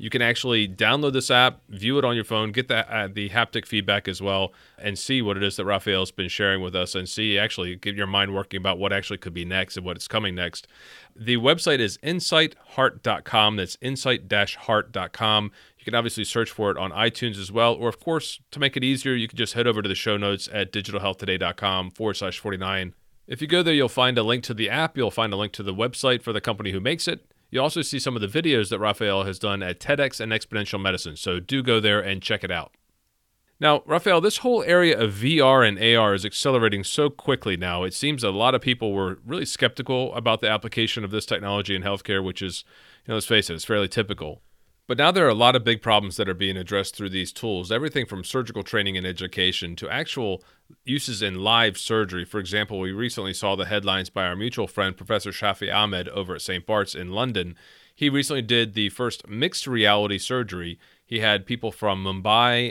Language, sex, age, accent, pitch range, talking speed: English, male, 40-59, American, 95-120 Hz, 220 wpm